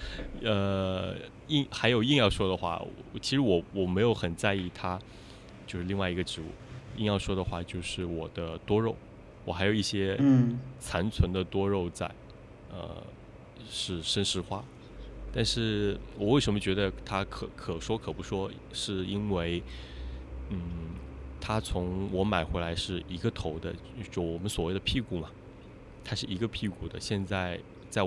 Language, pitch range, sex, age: Chinese, 85-105 Hz, male, 20-39